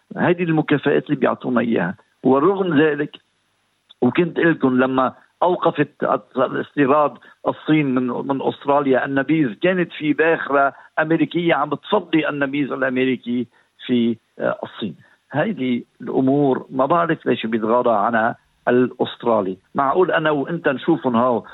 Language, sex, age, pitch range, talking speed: Arabic, male, 50-69, 125-150 Hz, 115 wpm